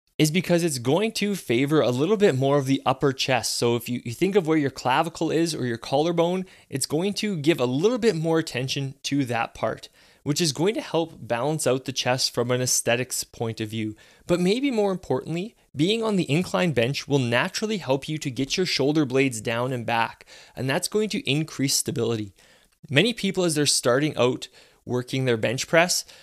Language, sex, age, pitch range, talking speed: English, male, 20-39, 125-170 Hz, 210 wpm